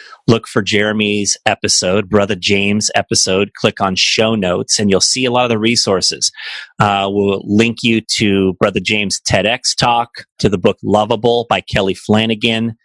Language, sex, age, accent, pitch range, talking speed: English, male, 30-49, American, 100-115 Hz, 165 wpm